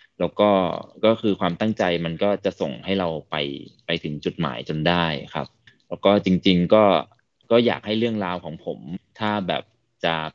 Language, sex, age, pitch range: Thai, male, 20-39, 80-100 Hz